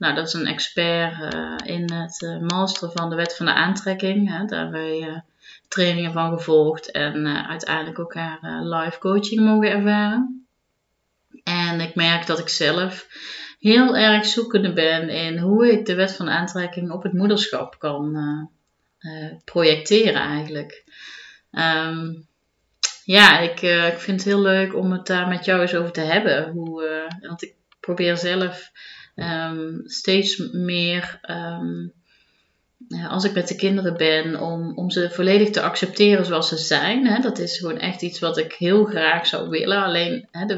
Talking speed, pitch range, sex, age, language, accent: 170 wpm, 165-195 Hz, female, 30-49, Dutch, Dutch